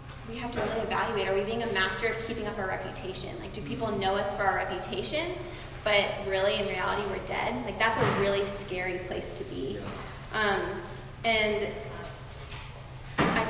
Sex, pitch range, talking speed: female, 195-225 Hz, 180 wpm